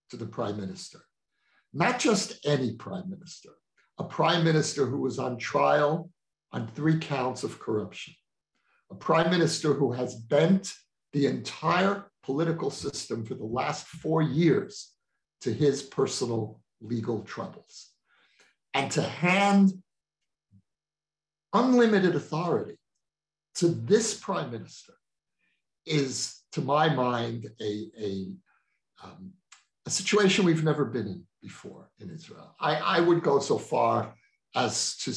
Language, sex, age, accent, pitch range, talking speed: English, male, 60-79, American, 130-170 Hz, 125 wpm